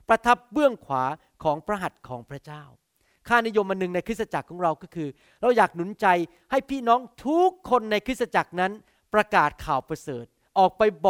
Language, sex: Thai, male